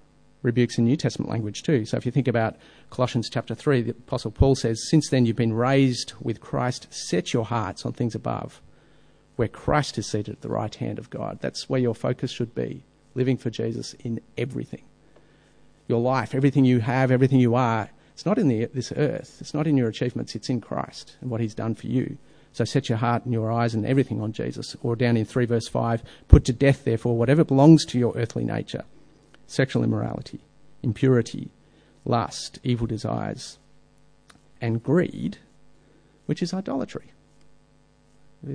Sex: male